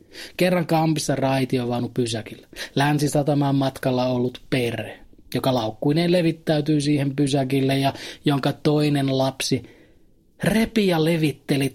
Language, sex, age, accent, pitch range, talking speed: Finnish, male, 30-49, native, 130-160 Hz, 105 wpm